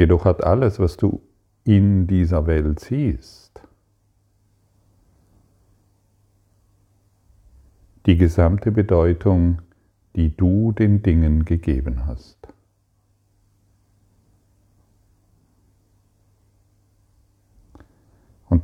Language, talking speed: German, 60 wpm